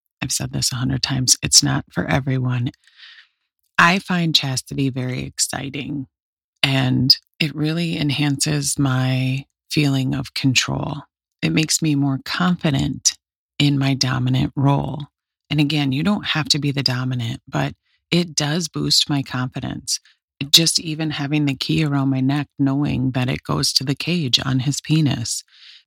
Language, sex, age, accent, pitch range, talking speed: English, female, 30-49, American, 130-155 Hz, 150 wpm